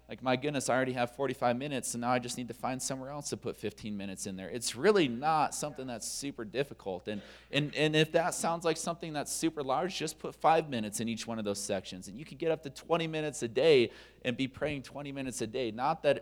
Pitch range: 120-150 Hz